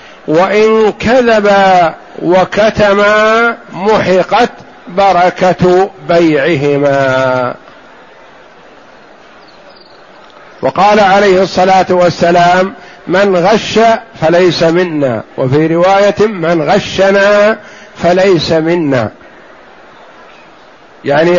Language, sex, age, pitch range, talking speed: Arabic, male, 50-69, 180-205 Hz, 60 wpm